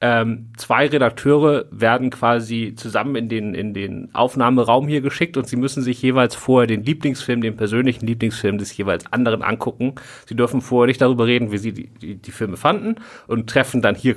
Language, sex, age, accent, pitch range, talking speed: German, male, 40-59, German, 115-135 Hz, 190 wpm